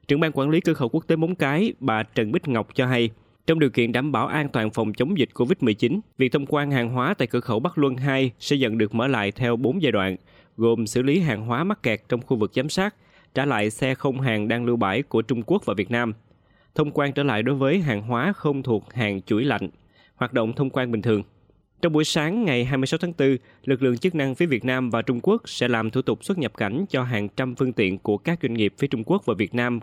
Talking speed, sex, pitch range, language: 265 wpm, male, 115-140 Hz, Vietnamese